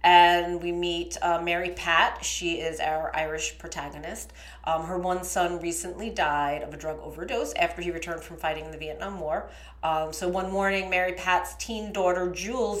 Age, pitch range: 30-49, 160-180 Hz